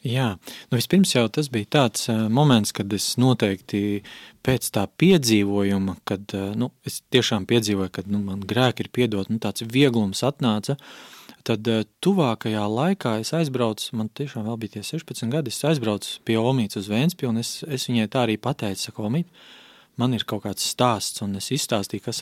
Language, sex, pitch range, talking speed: Russian, male, 105-135 Hz, 165 wpm